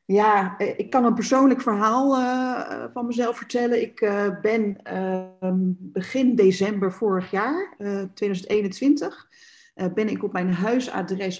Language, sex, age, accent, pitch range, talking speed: Dutch, female, 40-59, Dutch, 185-240 Hz, 135 wpm